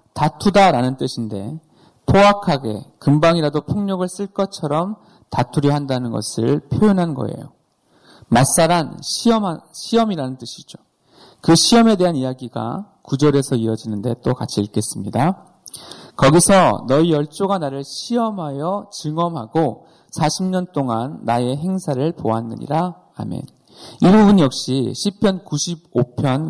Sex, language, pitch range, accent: male, Korean, 130-190 Hz, native